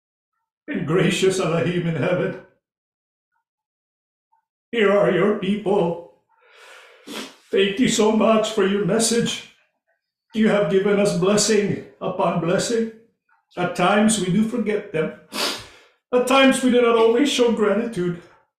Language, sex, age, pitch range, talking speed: English, male, 50-69, 195-235 Hz, 120 wpm